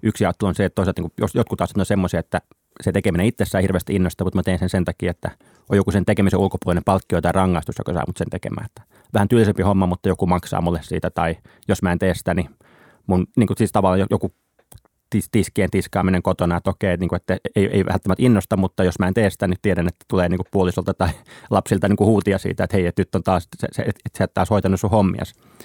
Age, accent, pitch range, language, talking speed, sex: 30-49, native, 90-105 Hz, Finnish, 240 wpm, male